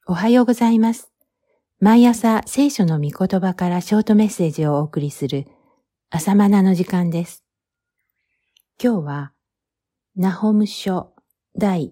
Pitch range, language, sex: 145-200 Hz, Japanese, female